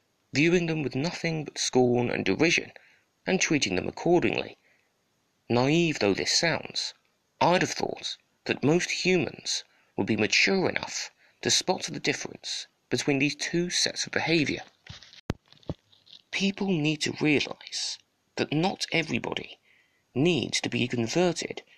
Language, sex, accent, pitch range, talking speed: English, male, British, 120-165 Hz, 130 wpm